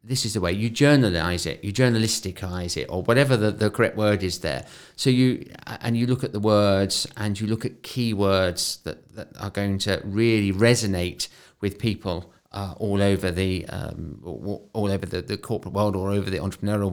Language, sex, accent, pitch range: English, male, British, 100-120 Hz